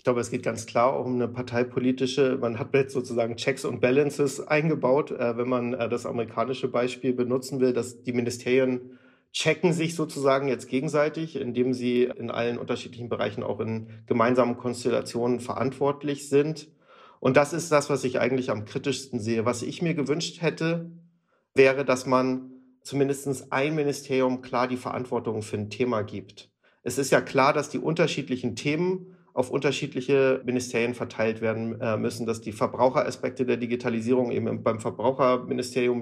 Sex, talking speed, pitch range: male, 155 wpm, 120-135 Hz